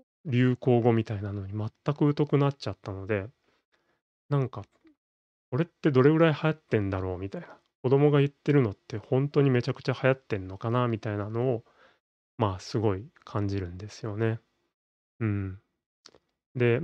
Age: 20-39